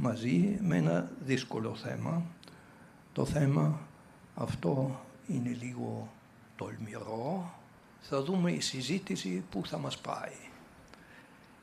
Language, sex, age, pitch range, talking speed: Greek, male, 60-79, 120-165 Hz, 100 wpm